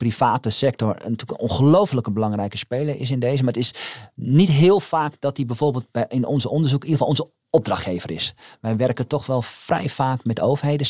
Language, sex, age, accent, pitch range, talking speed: English, male, 40-59, Dutch, 110-145 Hz, 200 wpm